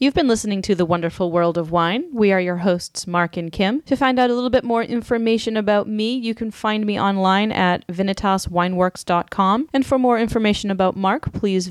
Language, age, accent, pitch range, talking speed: English, 30-49, American, 150-185 Hz, 205 wpm